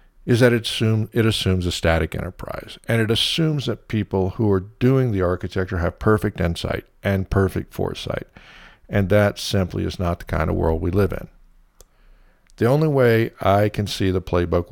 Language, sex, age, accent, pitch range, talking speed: English, male, 50-69, American, 90-105 Hz, 185 wpm